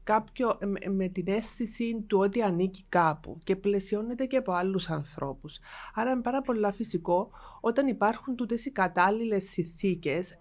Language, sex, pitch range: Greek, female, 175-220 Hz